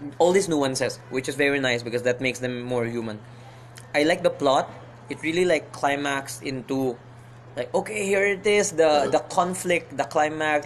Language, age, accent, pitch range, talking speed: English, 20-39, Filipino, 120-145 Hz, 180 wpm